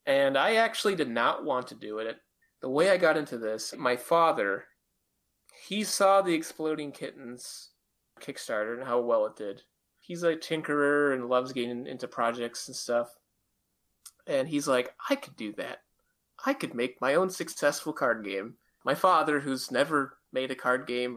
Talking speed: 175 wpm